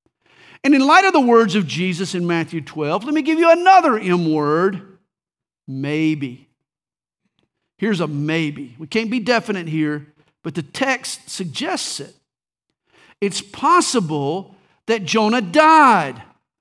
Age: 50-69